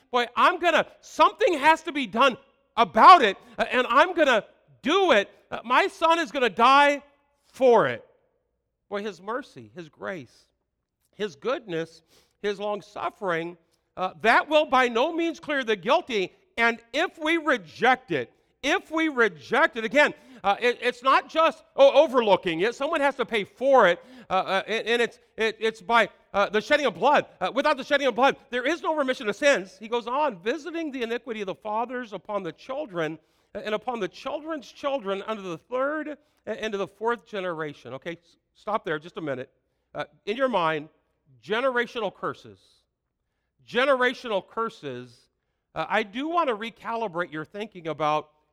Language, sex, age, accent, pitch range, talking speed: English, male, 50-69, American, 190-285 Hz, 170 wpm